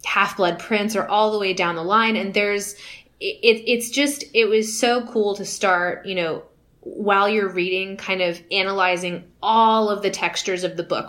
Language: English